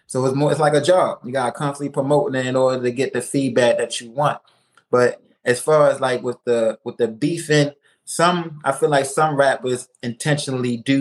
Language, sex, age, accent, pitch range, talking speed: English, male, 20-39, American, 130-165 Hz, 215 wpm